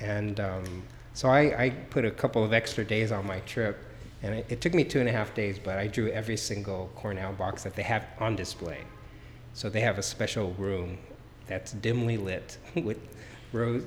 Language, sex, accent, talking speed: English, male, American, 205 wpm